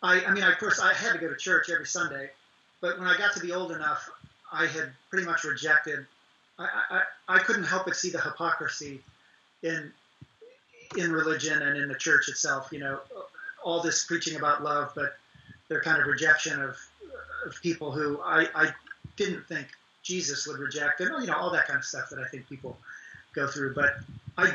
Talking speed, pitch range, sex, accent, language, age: 200 wpm, 145-175 Hz, male, American, English, 30-49